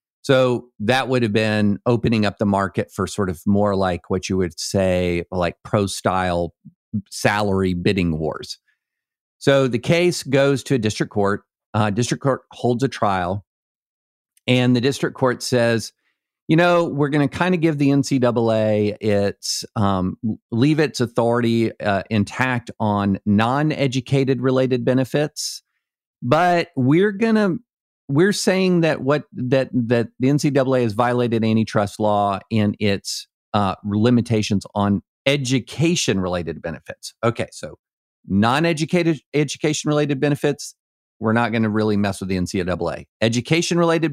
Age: 50-69